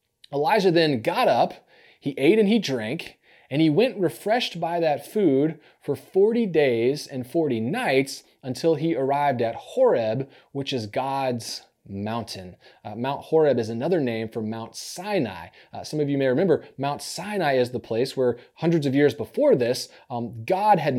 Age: 30-49